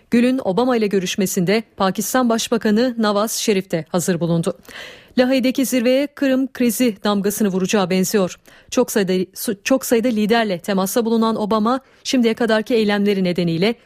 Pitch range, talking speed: 195-250 Hz, 130 wpm